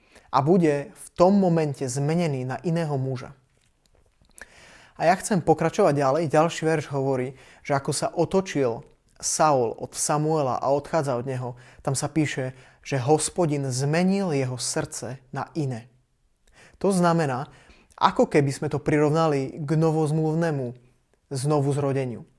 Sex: male